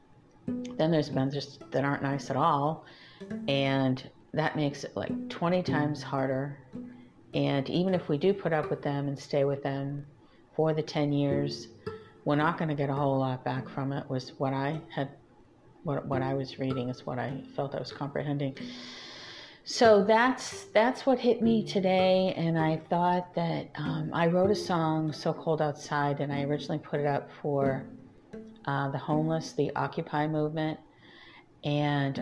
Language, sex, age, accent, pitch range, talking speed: English, female, 40-59, American, 140-165 Hz, 175 wpm